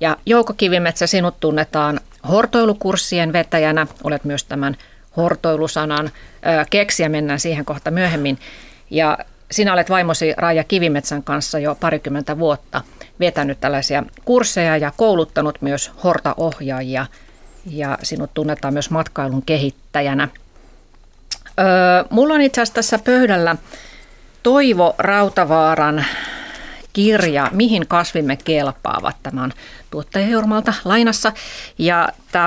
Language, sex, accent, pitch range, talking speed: Finnish, female, native, 150-190 Hz, 100 wpm